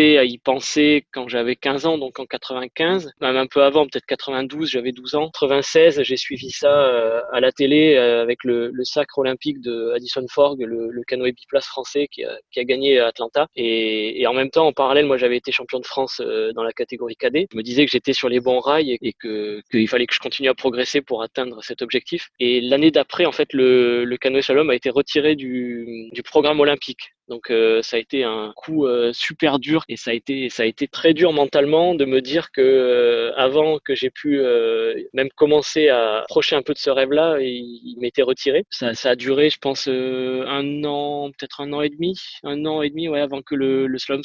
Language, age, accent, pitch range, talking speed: French, 20-39, French, 125-150 Hz, 230 wpm